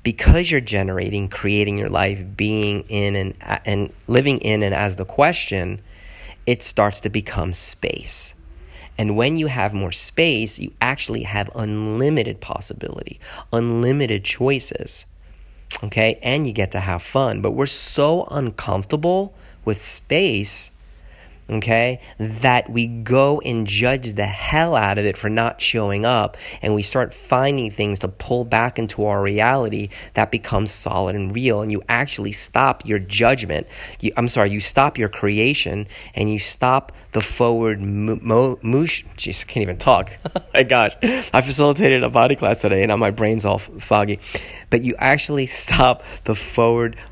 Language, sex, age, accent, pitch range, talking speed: English, male, 30-49, American, 100-120 Hz, 155 wpm